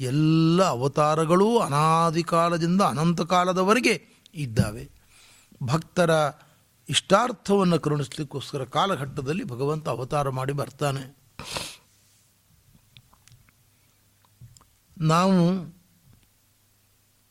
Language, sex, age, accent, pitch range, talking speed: Kannada, male, 60-79, native, 120-175 Hz, 55 wpm